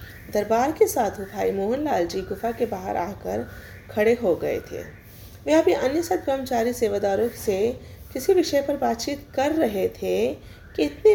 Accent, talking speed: native, 165 wpm